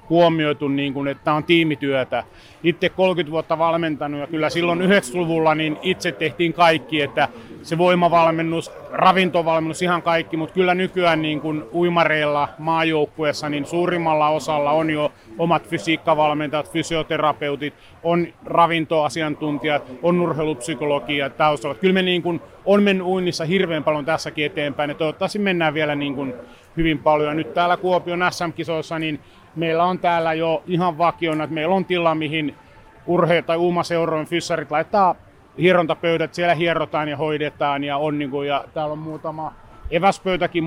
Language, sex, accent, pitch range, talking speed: Finnish, male, native, 150-170 Hz, 145 wpm